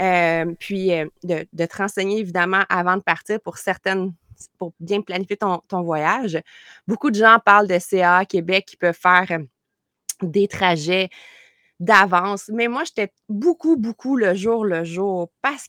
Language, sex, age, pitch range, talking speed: French, female, 20-39, 185-230 Hz, 155 wpm